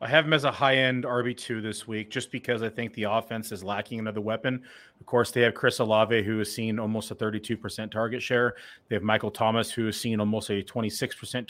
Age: 30-49